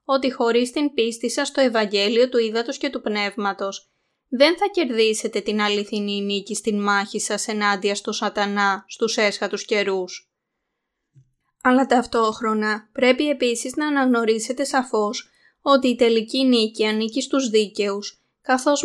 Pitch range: 215-260 Hz